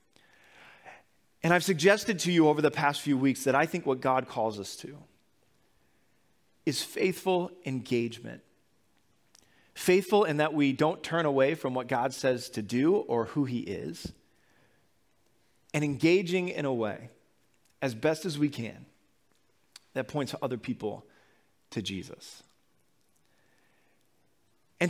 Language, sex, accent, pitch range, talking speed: English, male, American, 150-205 Hz, 135 wpm